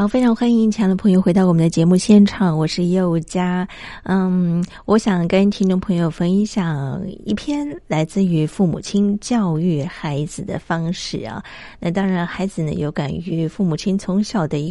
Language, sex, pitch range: Chinese, female, 175-215 Hz